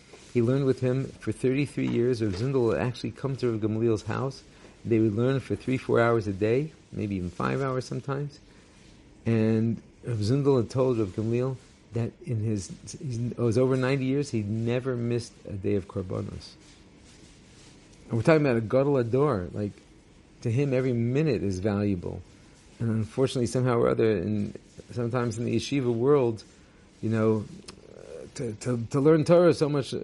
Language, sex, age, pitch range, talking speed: English, male, 50-69, 105-130 Hz, 170 wpm